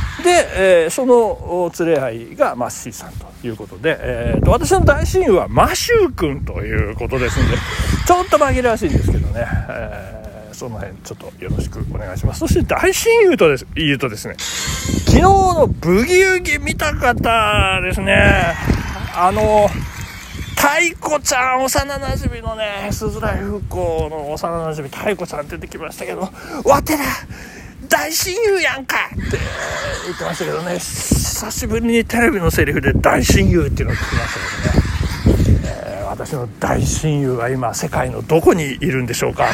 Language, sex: Japanese, male